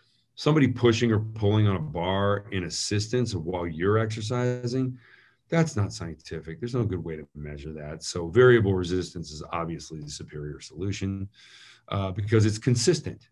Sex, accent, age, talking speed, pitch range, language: male, American, 40-59, 155 wpm, 90-120 Hz, English